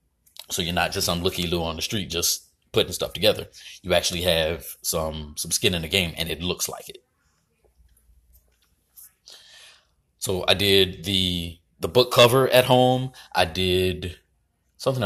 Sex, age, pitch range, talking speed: male, 30-49, 80-120 Hz, 160 wpm